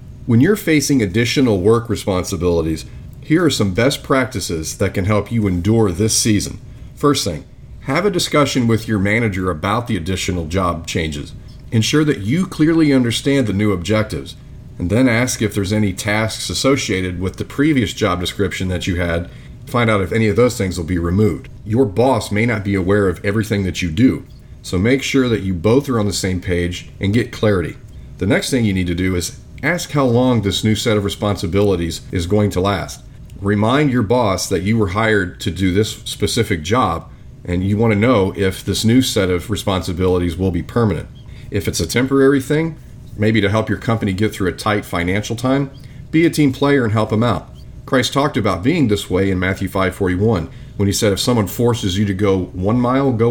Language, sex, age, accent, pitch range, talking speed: English, male, 40-59, American, 95-125 Hz, 205 wpm